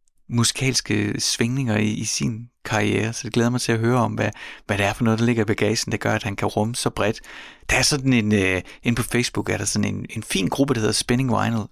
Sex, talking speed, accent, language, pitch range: male, 255 wpm, native, Danish, 110-135 Hz